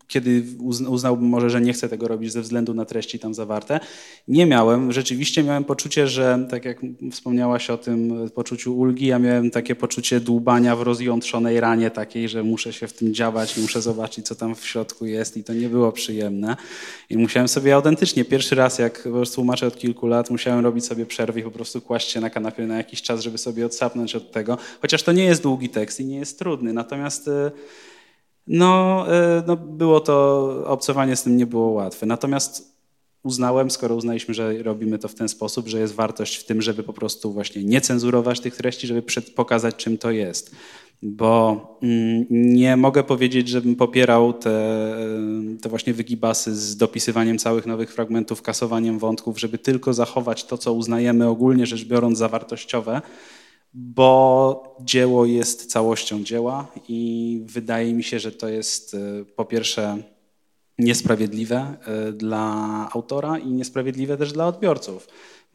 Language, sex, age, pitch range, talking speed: Polish, male, 20-39, 115-125 Hz, 170 wpm